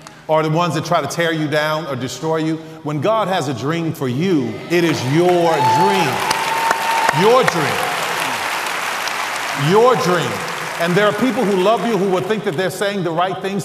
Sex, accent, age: male, American, 40-59